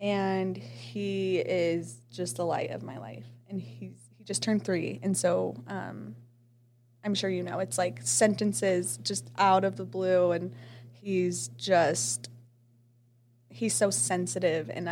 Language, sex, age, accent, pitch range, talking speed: English, female, 20-39, American, 120-190 Hz, 150 wpm